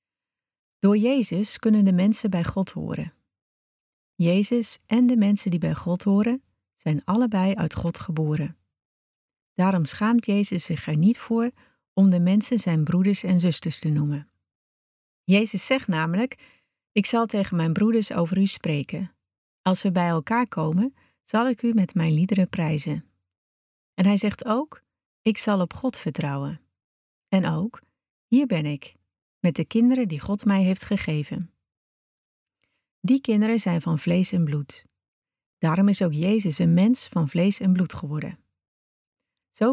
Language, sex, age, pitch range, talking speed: Dutch, female, 40-59, 165-220 Hz, 155 wpm